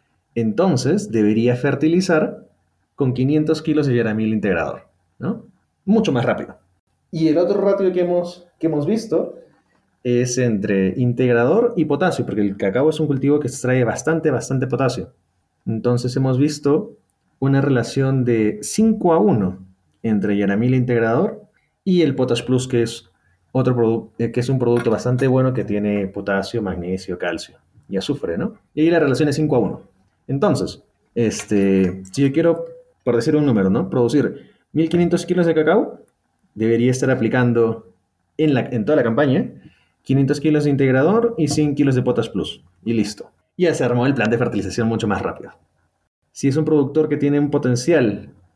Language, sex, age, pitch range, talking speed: Spanish, male, 30-49, 105-150 Hz, 165 wpm